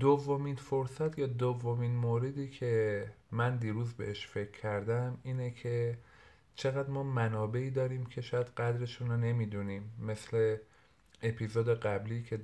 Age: 40-59